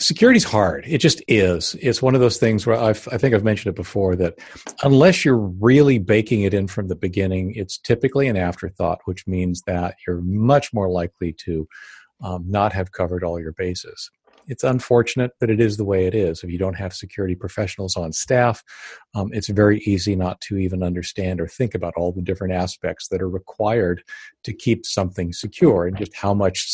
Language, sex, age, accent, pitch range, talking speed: English, male, 40-59, American, 90-115 Hz, 200 wpm